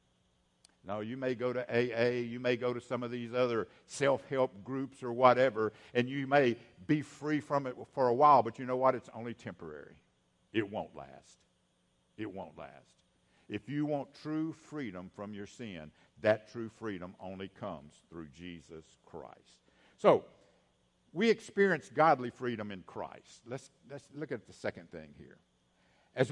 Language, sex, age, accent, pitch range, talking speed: English, male, 50-69, American, 115-190 Hz, 165 wpm